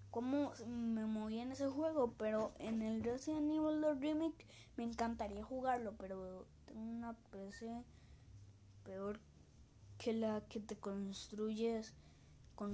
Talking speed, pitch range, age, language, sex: 125 wpm, 200-270 Hz, 20-39, Spanish, female